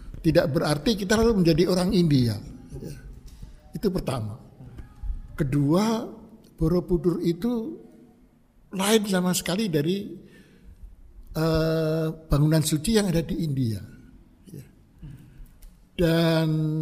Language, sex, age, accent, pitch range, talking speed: Indonesian, male, 60-79, native, 140-185 Hz, 80 wpm